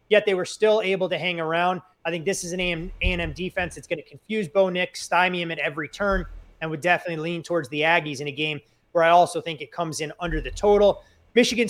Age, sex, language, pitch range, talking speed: 30-49, male, English, 165-195 Hz, 240 wpm